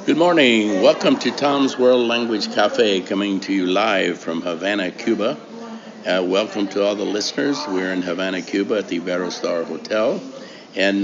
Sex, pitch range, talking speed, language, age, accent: male, 90-105 Hz, 170 wpm, English, 60-79, American